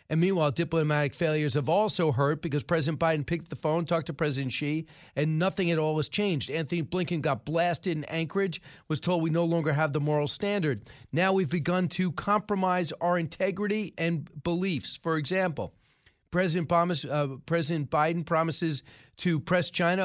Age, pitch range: 40-59, 150-185 Hz